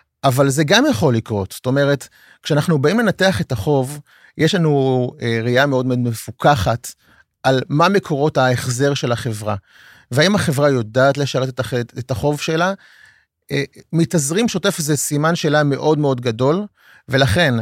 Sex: male